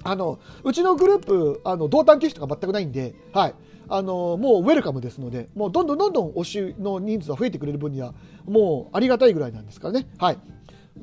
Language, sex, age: Japanese, male, 40-59